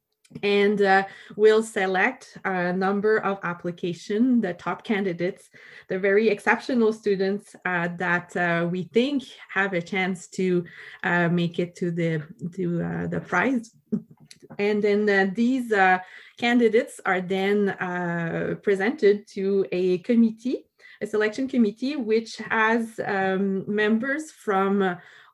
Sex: female